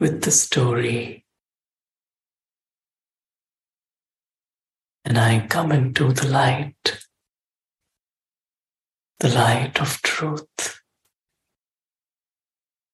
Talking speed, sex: 60 wpm, male